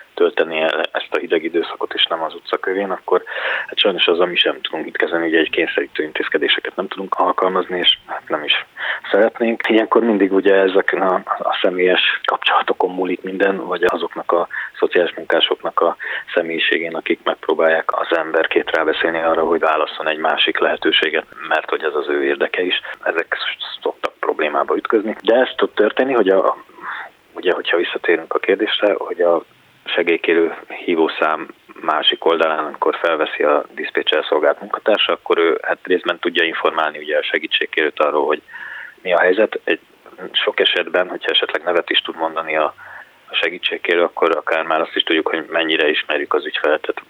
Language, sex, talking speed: Hungarian, male, 165 wpm